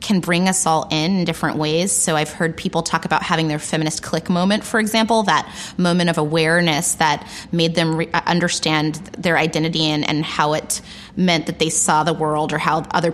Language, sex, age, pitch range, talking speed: English, female, 20-39, 160-185 Hz, 200 wpm